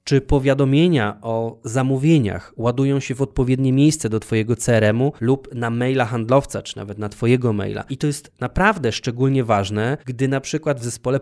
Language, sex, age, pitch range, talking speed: Polish, male, 20-39, 105-140 Hz, 170 wpm